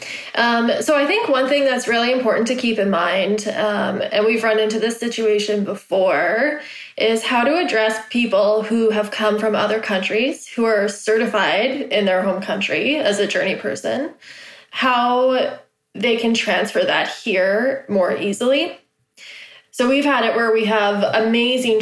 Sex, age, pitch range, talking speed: female, 20-39, 205-245 Hz, 160 wpm